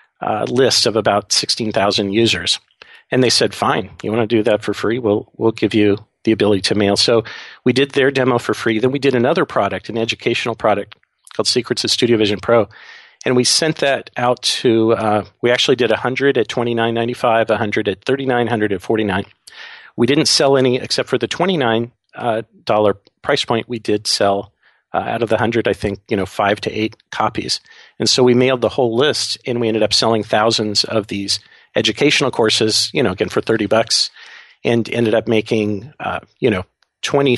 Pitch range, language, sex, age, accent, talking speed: 105-120 Hz, English, male, 40-59, American, 205 wpm